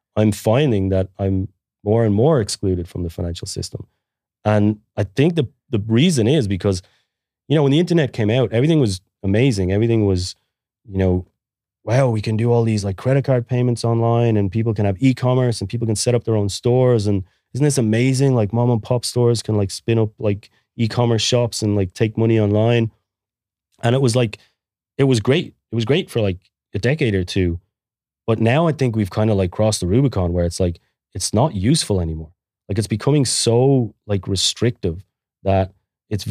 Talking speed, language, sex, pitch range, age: 200 wpm, English, male, 95-120 Hz, 30-49